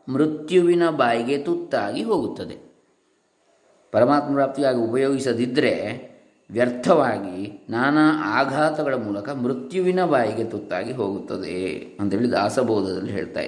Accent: native